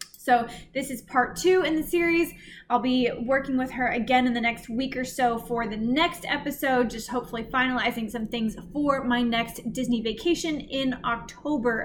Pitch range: 225-280 Hz